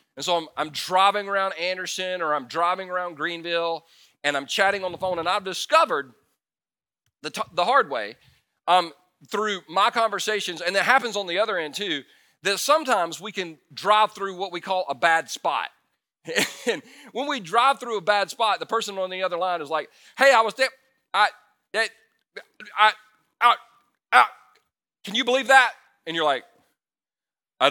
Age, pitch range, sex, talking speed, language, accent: 40-59, 175-230 Hz, male, 180 wpm, English, American